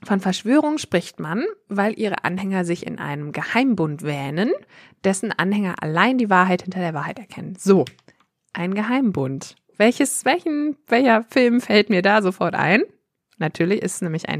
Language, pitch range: German, 170-230 Hz